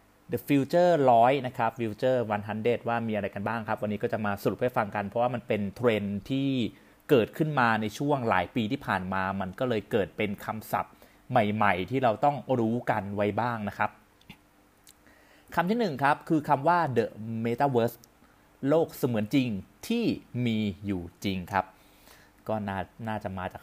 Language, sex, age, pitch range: Thai, male, 30-49, 100-130 Hz